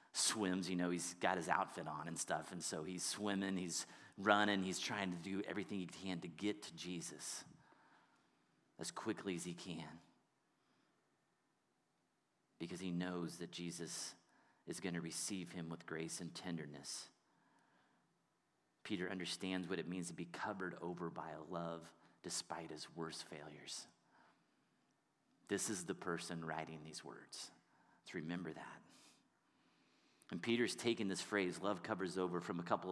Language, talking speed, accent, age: English, 150 wpm, American, 30-49